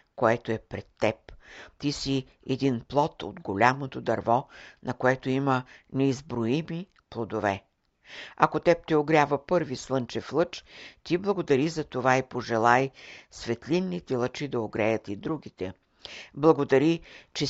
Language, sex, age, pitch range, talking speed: Bulgarian, female, 60-79, 115-145 Hz, 125 wpm